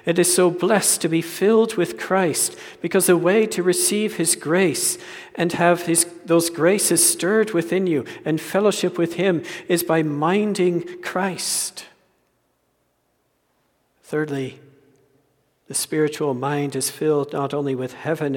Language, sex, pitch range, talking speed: English, male, 140-175 Hz, 135 wpm